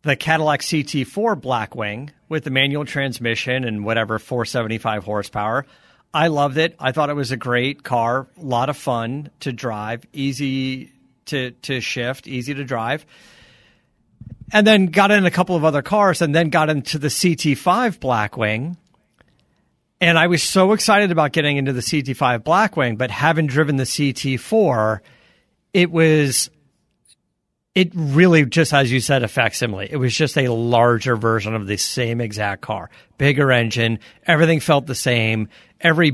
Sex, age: male, 40-59